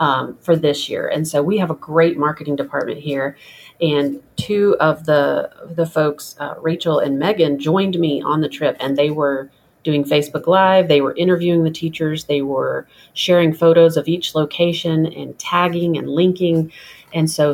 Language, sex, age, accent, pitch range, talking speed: English, female, 30-49, American, 145-170 Hz, 180 wpm